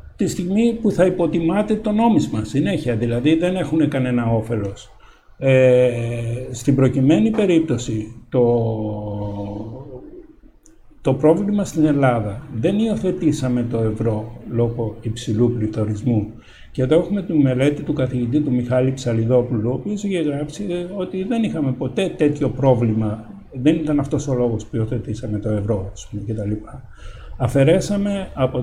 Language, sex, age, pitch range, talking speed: Greek, male, 60-79, 115-150 Hz, 130 wpm